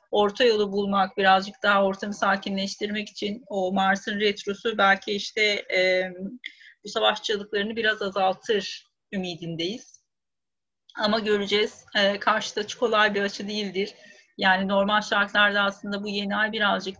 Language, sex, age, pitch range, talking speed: Turkish, female, 40-59, 195-235 Hz, 125 wpm